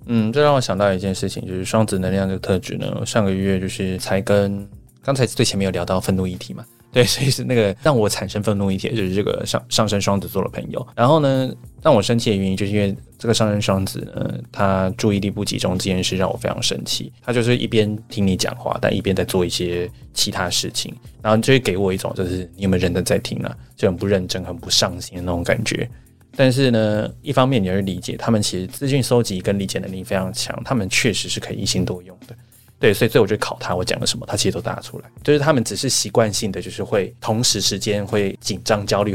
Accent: native